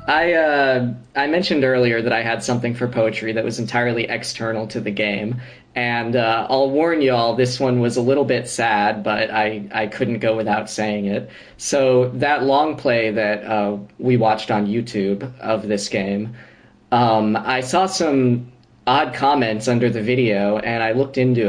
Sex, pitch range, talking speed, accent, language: male, 110-130 Hz, 180 wpm, American, English